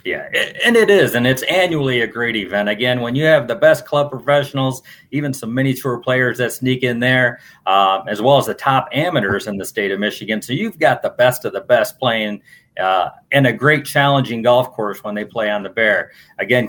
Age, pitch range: 40-59, 115-135 Hz